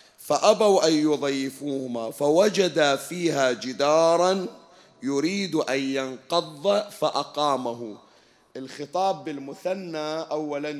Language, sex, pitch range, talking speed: Arabic, male, 140-180 Hz, 70 wpm